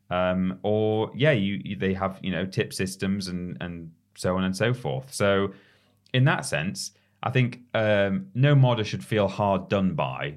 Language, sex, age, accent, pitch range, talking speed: English, male, 30-49, British, 90-125 Hz, 185 wpm